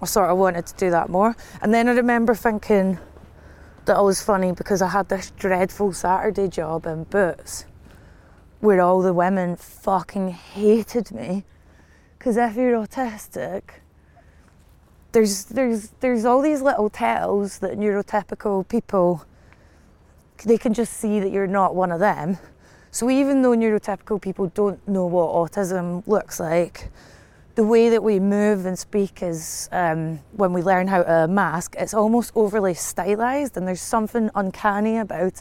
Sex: female